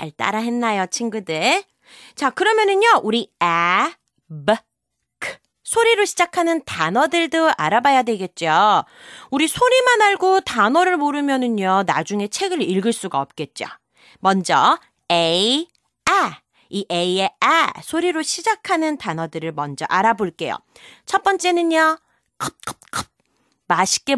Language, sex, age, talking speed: English, female, 30-49, 95 wpm